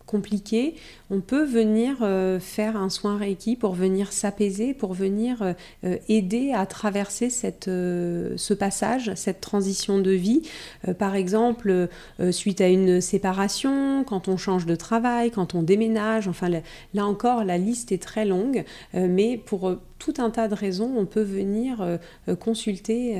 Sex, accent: female, French